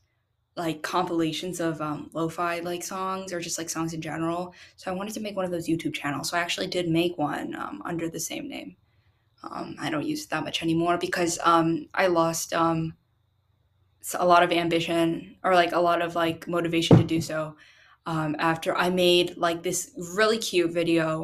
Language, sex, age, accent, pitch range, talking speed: English, female, 10-29, American, 165-190 Hz, 200 wpm